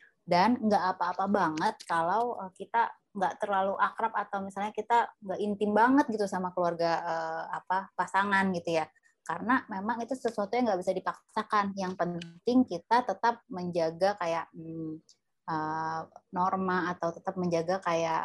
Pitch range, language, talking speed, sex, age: 165-205 Hz, Indonesian, 140 wpm, female, 20-39